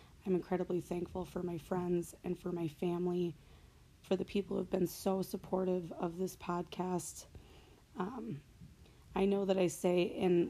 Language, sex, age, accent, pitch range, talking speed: English, female, 20-39, American, 180-195 Hz, 160 wpm